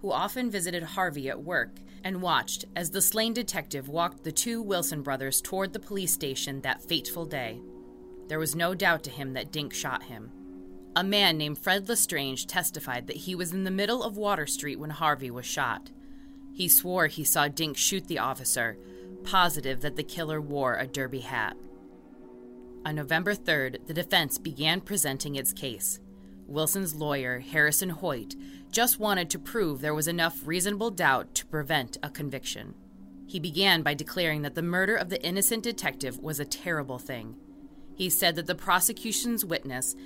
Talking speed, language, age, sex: 175 wpm, English, 20-39, female